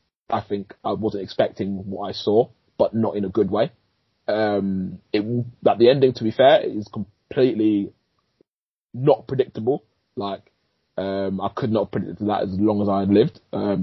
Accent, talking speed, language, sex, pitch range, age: British, 175 wpm, English, male, 100-140 Hz, 20-39